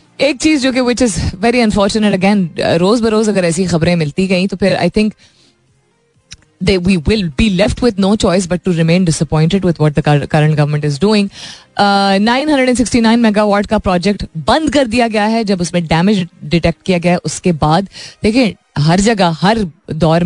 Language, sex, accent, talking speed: Hindi, female, native, 175 wpm